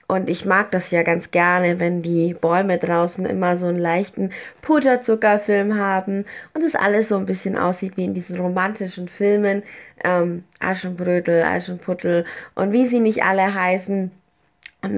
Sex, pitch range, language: female, 185-225 Hz, German